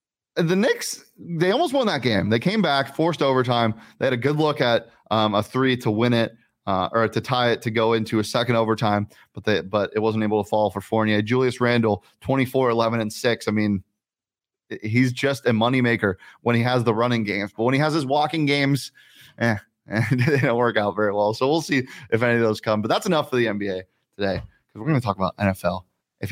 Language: English